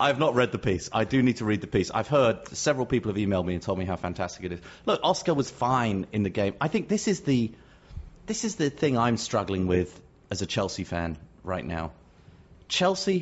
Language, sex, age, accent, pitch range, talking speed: English, male, 30-49, British, 95-140 Hz, 240 wpm